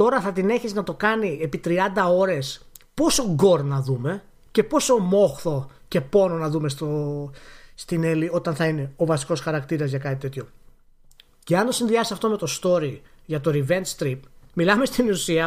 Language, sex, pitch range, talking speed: Greek, male, 145-210 Hz, 185 wpm